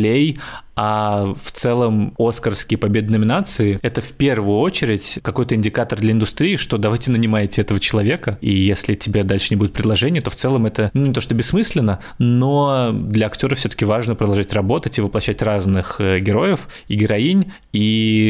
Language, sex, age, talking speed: Russian, male, 20-39, 160 wpm